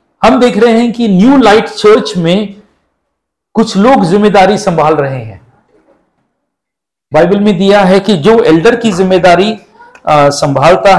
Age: 50-69